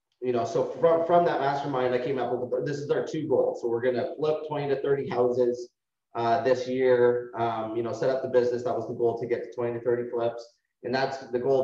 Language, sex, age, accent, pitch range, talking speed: English, male, 30-49, American, 120-150 Hz, 255 wpm